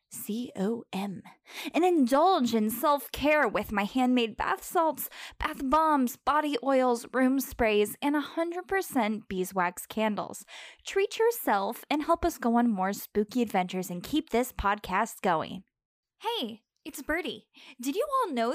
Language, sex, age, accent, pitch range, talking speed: English, female, 10-29, American, 225-320 Hz, 135 wpm